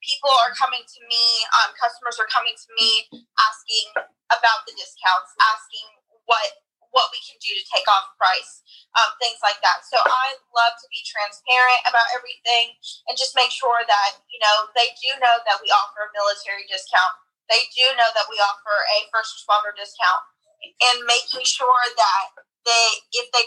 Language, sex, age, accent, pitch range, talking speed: English, female, 20-39, American, 215-255 Hz, 180 wpm